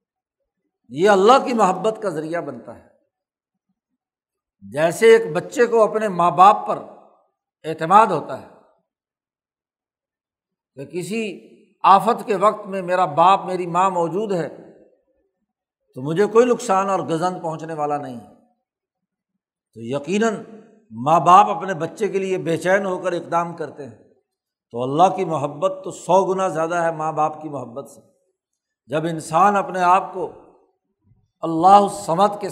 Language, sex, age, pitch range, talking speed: Urdu, male, 60-79, 170-215 Hz, 140 wpm